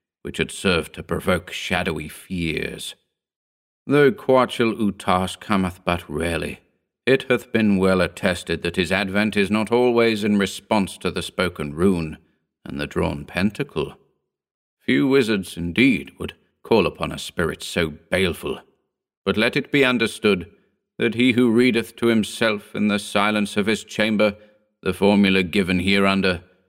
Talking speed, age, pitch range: 145 wpm, 50-69, 85-110 Hz